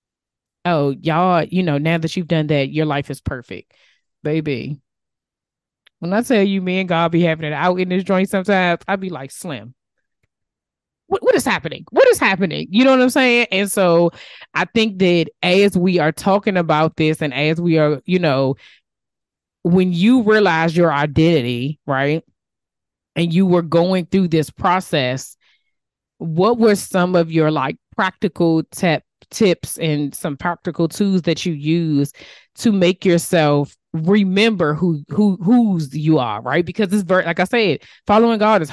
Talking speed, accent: 170 wpm, American